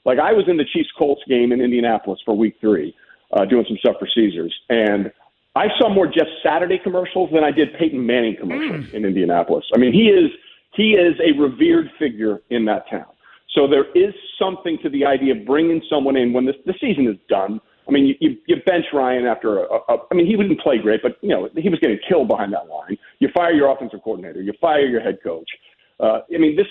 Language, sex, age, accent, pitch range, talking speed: English, male, 50-69, American, 135-225 Hz, 225 wpm